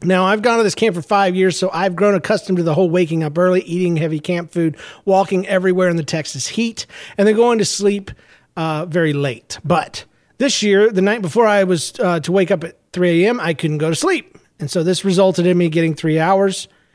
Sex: male